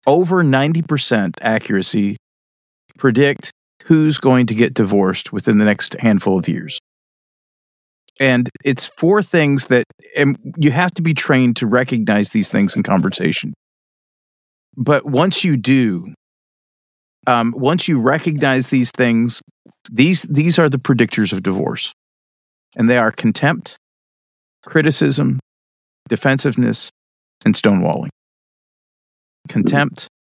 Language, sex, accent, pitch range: English, male, American, 105-150 Hz